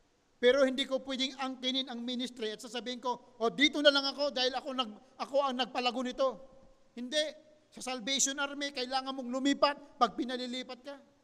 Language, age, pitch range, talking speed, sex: Filipino, 50-69, 245-280 Hz, 170 wpm, male